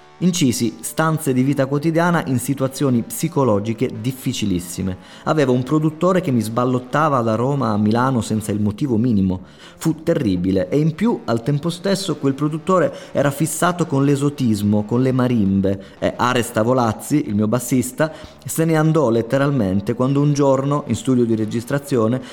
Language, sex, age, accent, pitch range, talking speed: Italian, male, 30-49, native, 105-140 Hz, 155 wpm